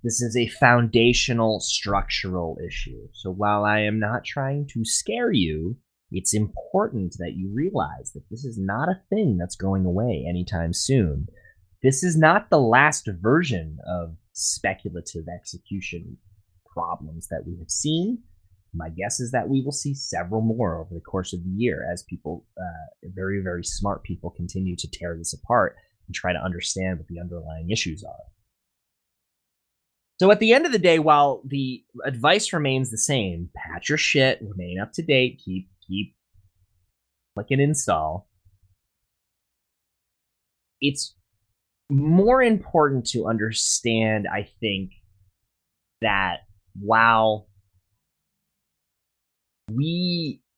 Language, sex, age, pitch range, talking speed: English, male, 20-39, 95-135 Hz, 135 wpm